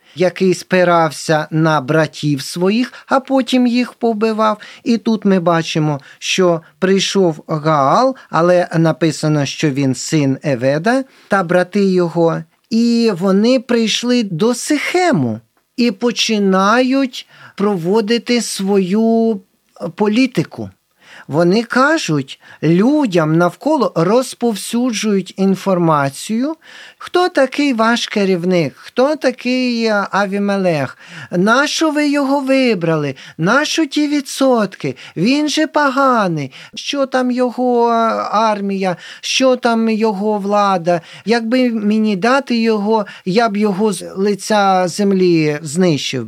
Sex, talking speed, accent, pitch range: male, 100 wpm, native, 170-240 Hz